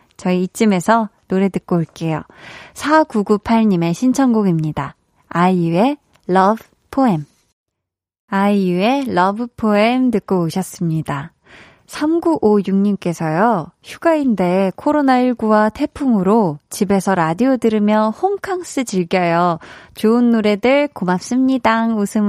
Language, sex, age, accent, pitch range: Korean, female, 20-39, native, 180-245 Hz